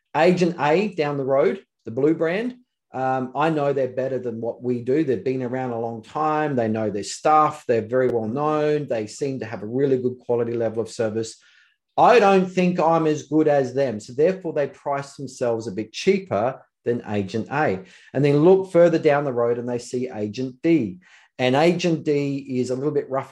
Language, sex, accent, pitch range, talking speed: English, male, Australian, 120-150 Hz, 210 wpm